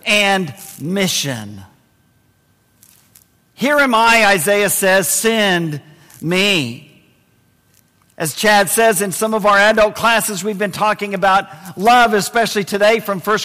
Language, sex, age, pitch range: English, male, 50-69, 170-250 Hz